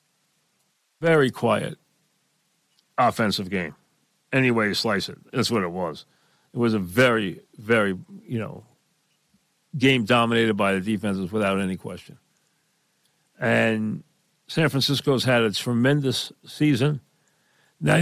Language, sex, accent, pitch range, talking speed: English, male, American, 115-145 Hz, 115 wpm